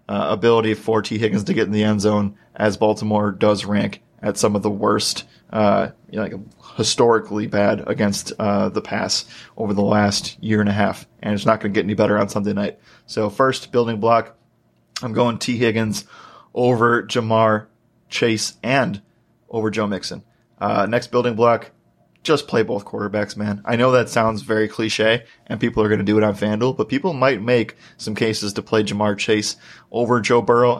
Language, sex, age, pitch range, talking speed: English, male, 20-39, 105-120 Hz, 190 wpm